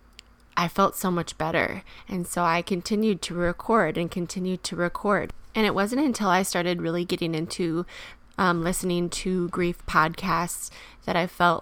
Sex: female